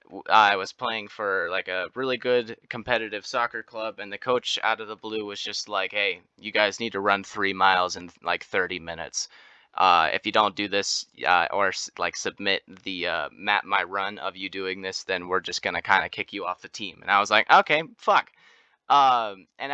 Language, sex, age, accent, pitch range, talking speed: English, male, 20-39, American, 105-125 Hz, 220 wpm